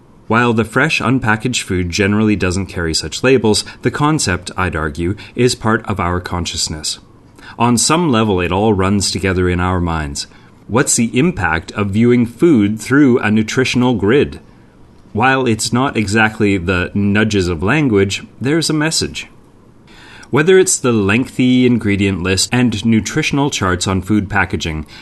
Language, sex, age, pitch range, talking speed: English, male, 30-49, 95-120 Hz, 150 wpm